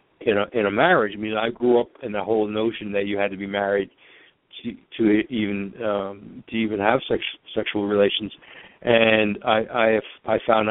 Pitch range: 105-130 Hz